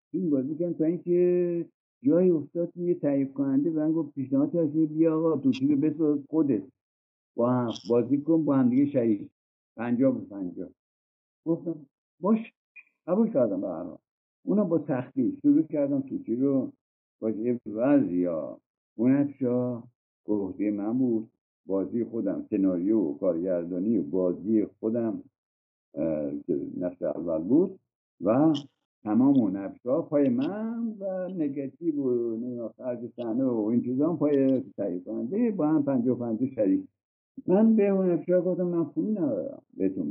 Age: 60-79